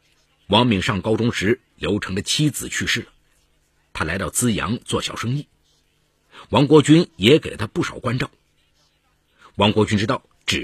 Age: 50-69